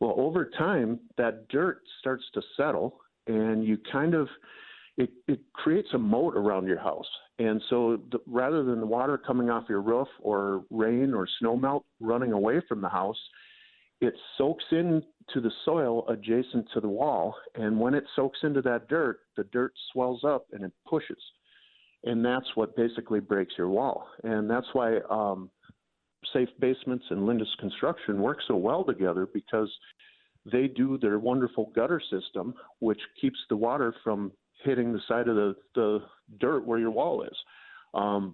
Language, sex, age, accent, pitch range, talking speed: English, male, 50-69, American, 110-135 Hz, 170 wpm